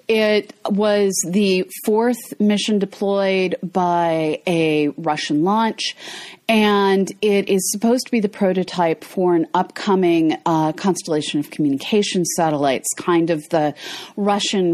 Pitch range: 170-225 Hz